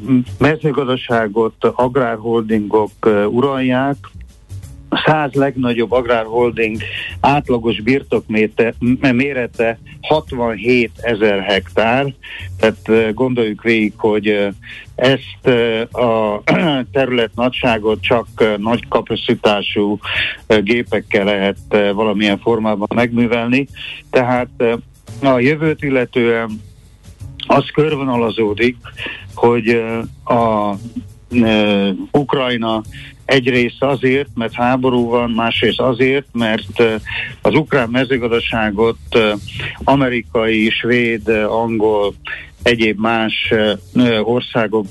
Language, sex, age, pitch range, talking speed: Hungarian, male, 60-79, 110-125 Hz, 75 wpm